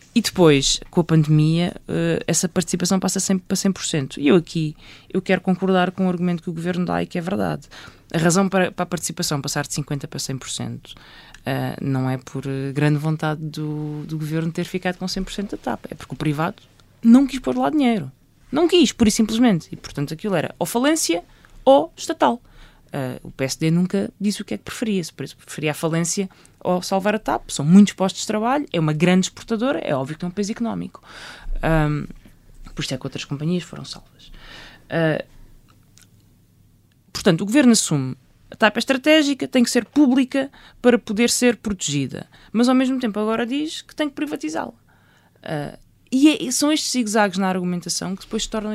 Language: Portuguese